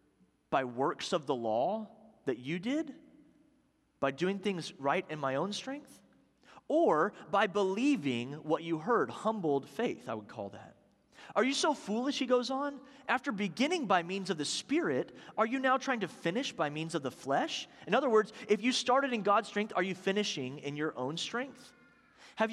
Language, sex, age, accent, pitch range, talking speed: English, male, 30-49, American, 145-225 Hz, 185 wpm